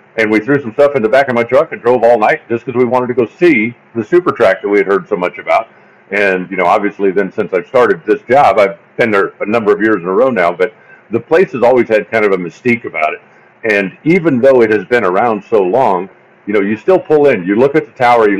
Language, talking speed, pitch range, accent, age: English, 280 wpm, 105-140 Hz, American, 50-69